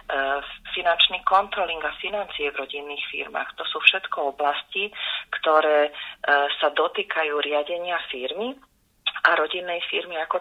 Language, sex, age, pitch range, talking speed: Slovak, female, 30-49, 140-170 Hz, 115 wpm